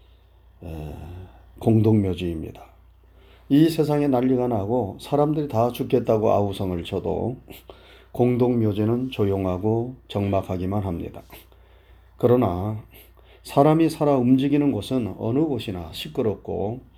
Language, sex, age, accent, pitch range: Korean, male, 30-49, native, 90-130 Hz